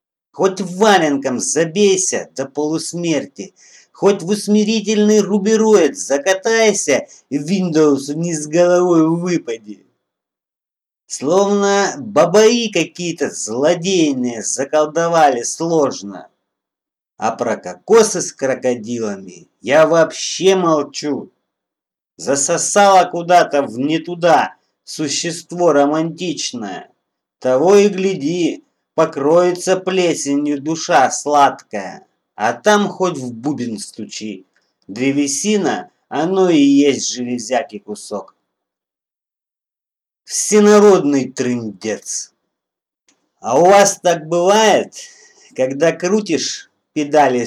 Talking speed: 85 wpm